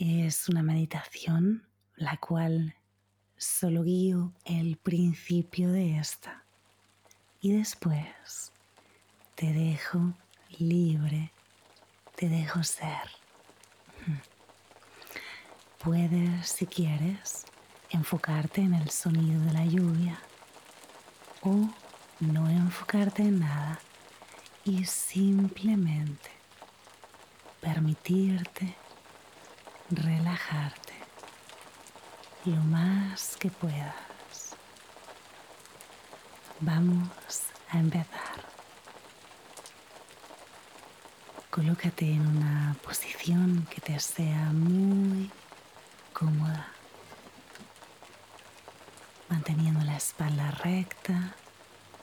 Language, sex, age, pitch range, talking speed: Spanish, female, 30-49, 150-175 Hz, 65 wpm